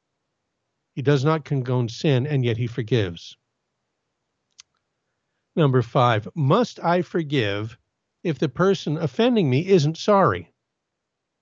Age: 60-79